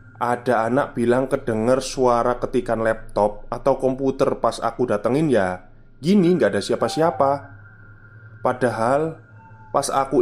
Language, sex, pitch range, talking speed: Indonesian, male, 110-135 Hz, 115 wpm